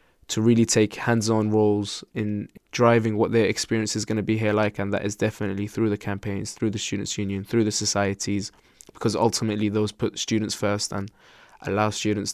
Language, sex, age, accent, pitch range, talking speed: English, male, 20-39, British, 105-120 Hz, 190 wpm